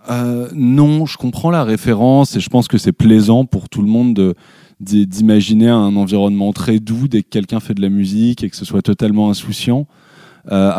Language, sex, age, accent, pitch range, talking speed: French, male, 20-39, French, 100-120 Hz, 205 wpm